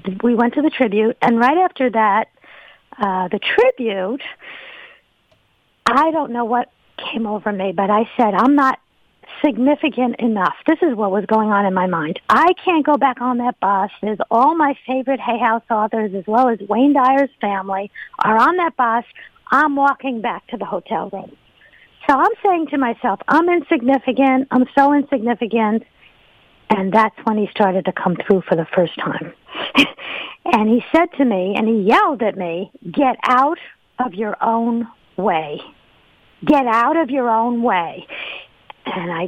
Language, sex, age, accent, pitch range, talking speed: English, female, 50-69, American, 215-285 Hz, 170 wpm